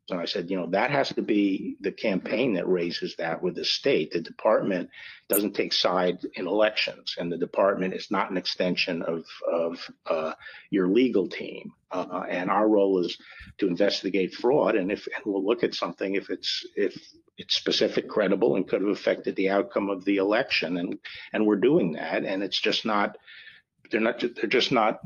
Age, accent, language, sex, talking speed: 50-69, American, English, male, 190 wpm